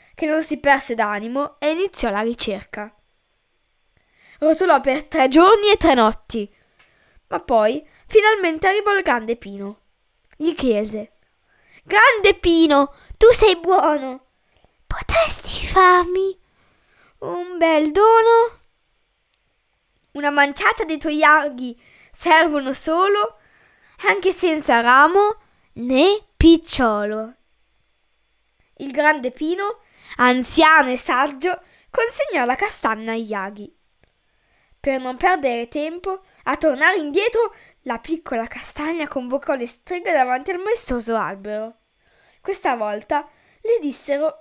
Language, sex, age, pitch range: Italian, female, 10-29, 240-365 Hz